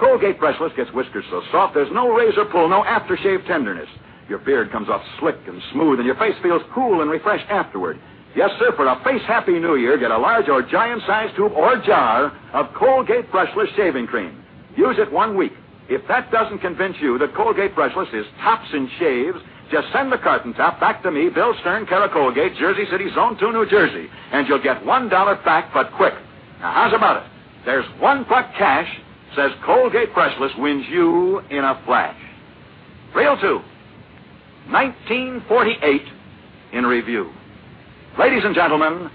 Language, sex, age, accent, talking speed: English, male, 60-79, American, 175 wpm